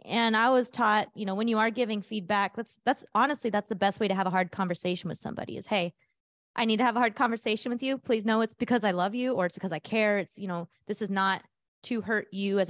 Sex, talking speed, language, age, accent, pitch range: female, 275 wpm, English, 20-39, American, 190-235 Hz